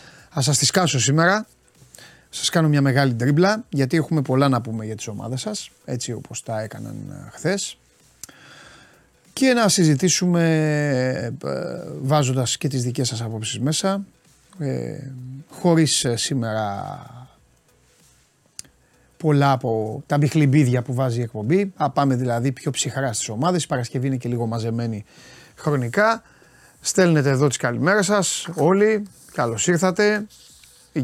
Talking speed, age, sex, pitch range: 130 wpm, 30-49, male, 120-170 Hz